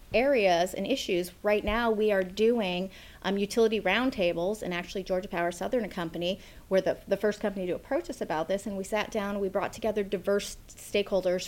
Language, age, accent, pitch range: English, 30-49, American, 180-215 Hz